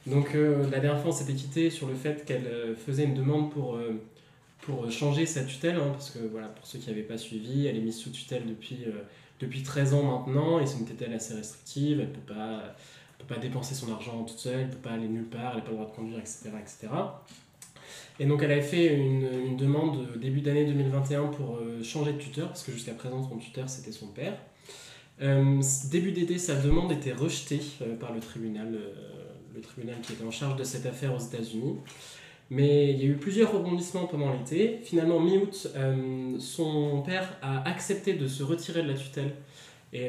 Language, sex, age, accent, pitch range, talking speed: French, male, 20-39, French, 120-145 Hz, 220 wpm